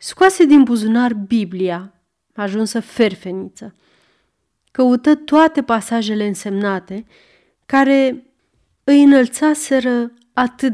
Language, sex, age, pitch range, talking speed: Romanian, female, 30-49, 200-255 Hz, 80 wpm